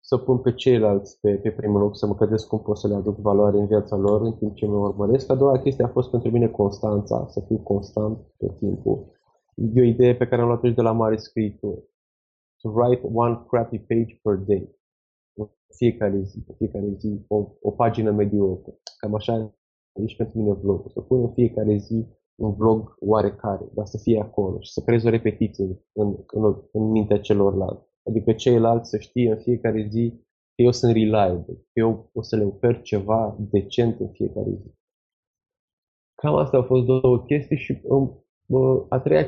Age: 20-39